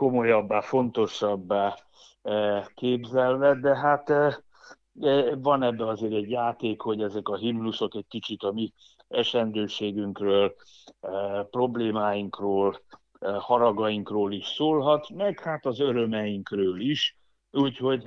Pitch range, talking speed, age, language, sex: 105-125 Hz, 95 wpm, 60-79, Hungarian, male